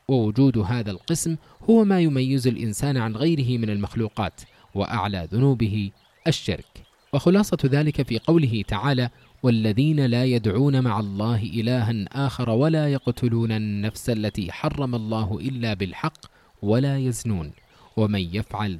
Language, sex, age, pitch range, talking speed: English, male, 20-39, 110-145 Hz, 120 wpm